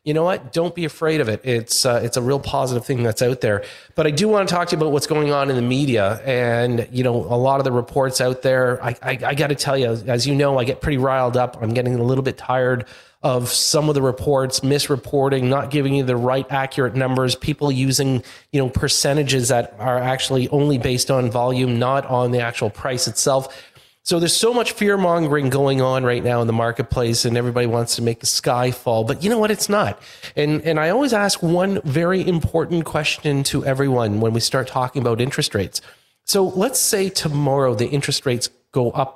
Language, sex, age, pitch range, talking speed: English, male, 30-49, 125-150 Hz, 230 wpm